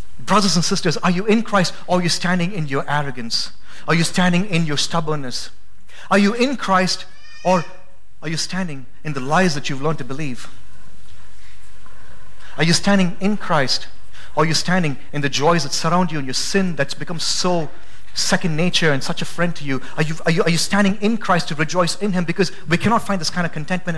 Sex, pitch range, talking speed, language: male, 120-180 Hz, 210 wpm, English